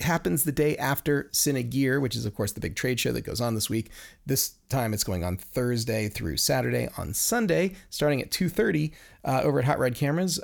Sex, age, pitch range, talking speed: male, 30-49, 110-150 Hz, 215 wpm